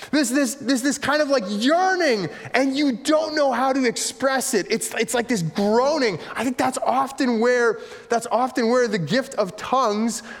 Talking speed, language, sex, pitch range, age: 190 wpm, English, male, 180-245 Hz, 20-39